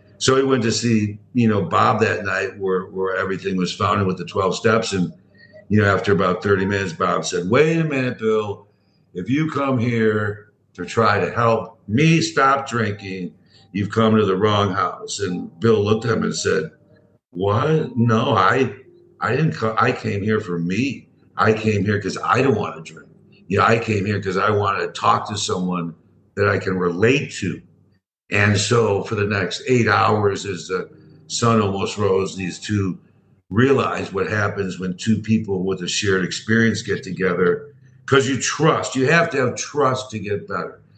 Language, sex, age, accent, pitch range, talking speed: English, male, 60-79, American, 100-120 Hz, 190 wpm